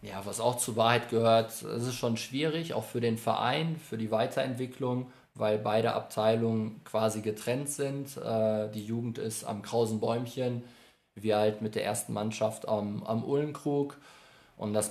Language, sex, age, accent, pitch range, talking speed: German, male, 20-39, German, 110-120 Hz, 155 wpm